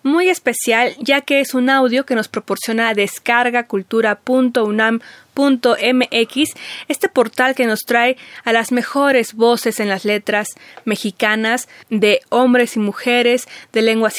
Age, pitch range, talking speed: 20-39, 215-245 Hz, 130 wpm